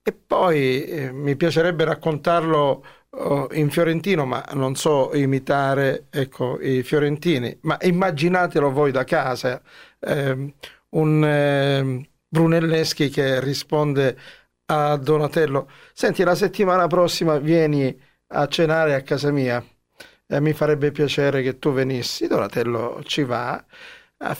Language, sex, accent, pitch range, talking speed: Italian, male, native, 130-165 Hz, 125 wpm